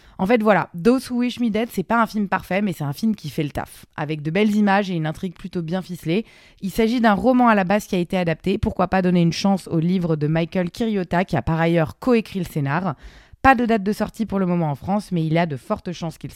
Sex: female